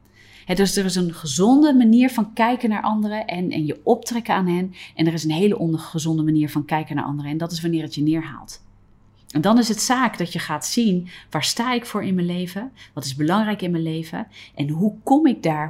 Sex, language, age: female, Dutch, 30-49